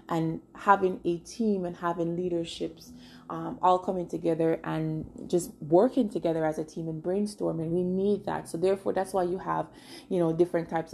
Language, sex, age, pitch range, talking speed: English, female, 20-39, 160-190 Hz, 180 wpm